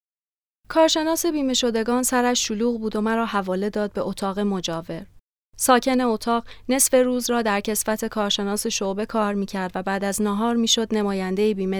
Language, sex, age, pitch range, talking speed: Persian, female, 30-49, 200-255 Hz, 170 wpm